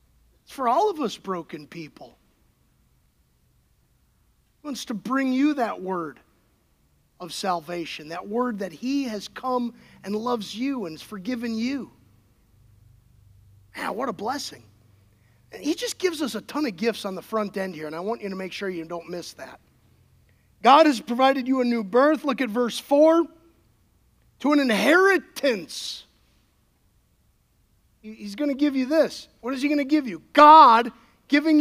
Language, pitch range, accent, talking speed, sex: English, 190-290 Hz, American, 165 wpm, male